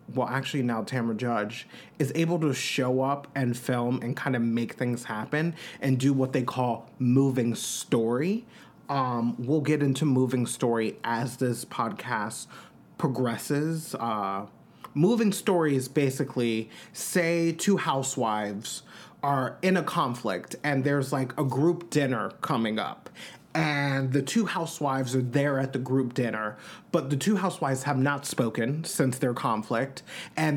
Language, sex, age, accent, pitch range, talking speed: English, male, 30-49, American, 130-170 Hz, 150 wpm